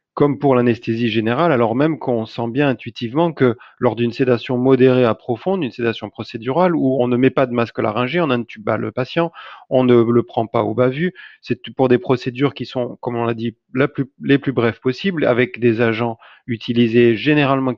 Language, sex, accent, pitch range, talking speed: French, male, French, 115-135 Hz, 200 wpm